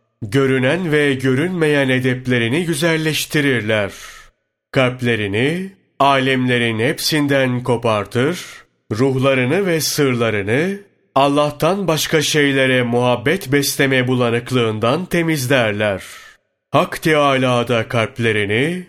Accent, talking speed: native, 65 wpm